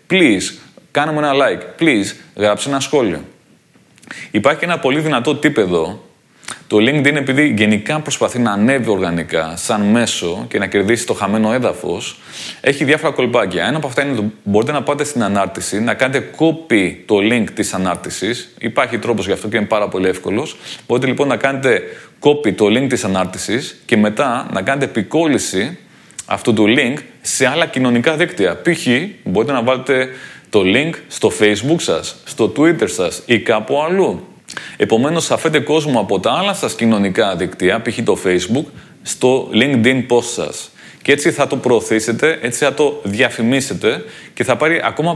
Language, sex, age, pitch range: Greek, male, 30-49, 105-145 Hz